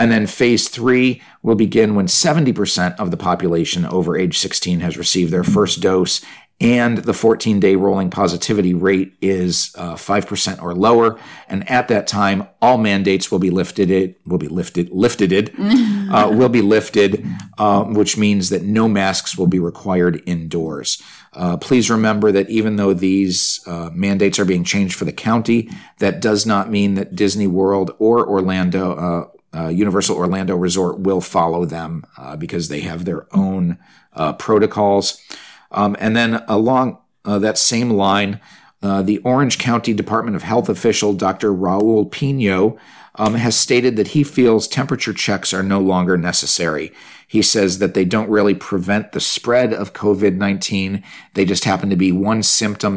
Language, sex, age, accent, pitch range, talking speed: English, male, 40-59, American, 95-110 Hz, 170 wpm